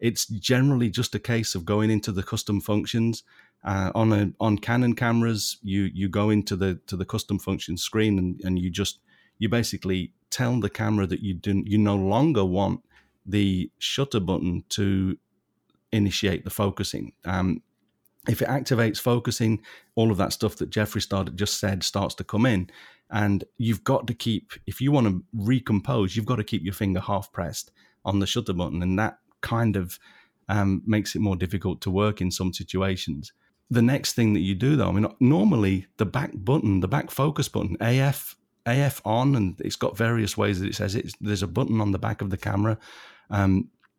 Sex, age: male, 30-49